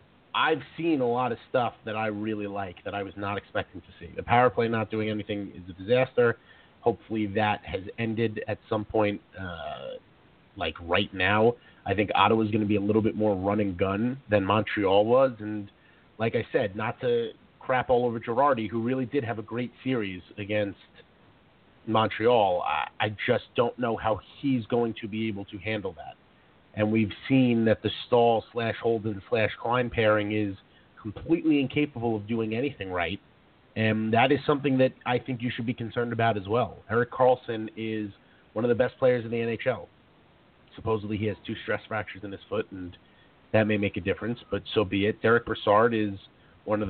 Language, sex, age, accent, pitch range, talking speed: English, male, 40-59, American, 105-120 Hz, 195 wpm